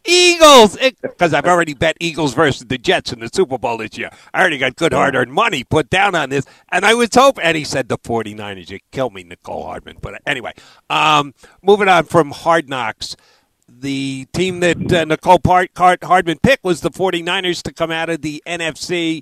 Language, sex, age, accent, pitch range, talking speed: English, male, 50-69, American, 135-180 Hz, 195 wpm